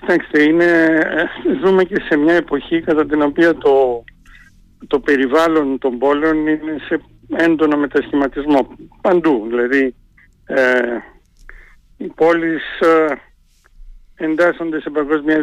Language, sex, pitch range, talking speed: Greek, male, 130-165 Hz, 105 wpm